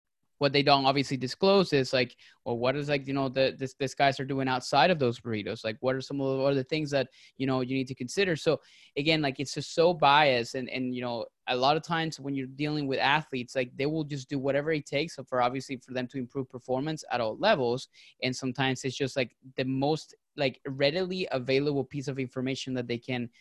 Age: 20-39